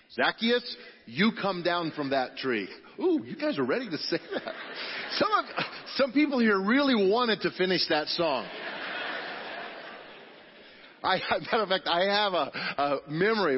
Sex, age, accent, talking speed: male, 40-59, American, 155 wpm